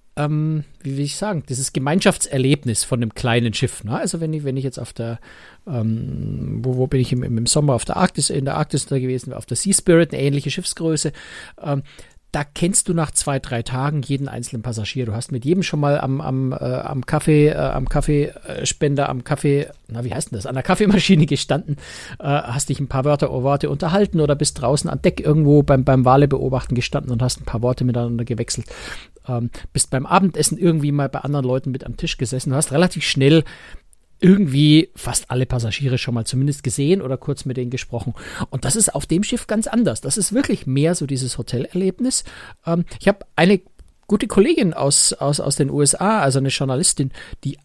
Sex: male